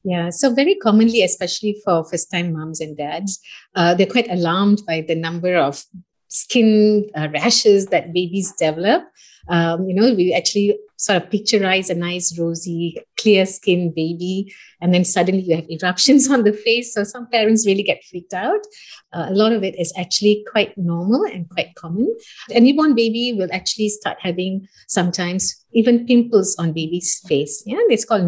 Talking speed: 175 wpm